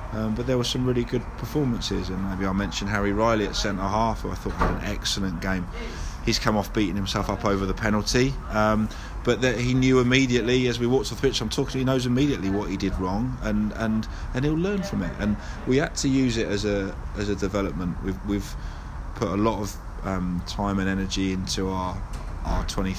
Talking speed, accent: 220 wpm, British